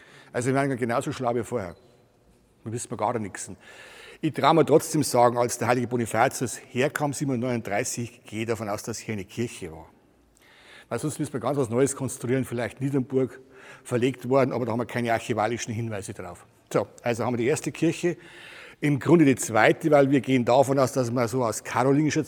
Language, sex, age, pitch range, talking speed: German, male, 60-79, 115-135 Hz, 195 wpm